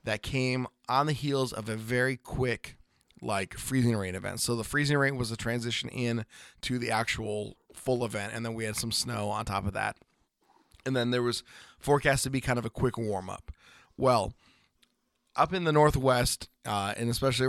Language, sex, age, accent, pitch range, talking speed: English, male, 20-39, American, 110-130 Hz, 190 wpm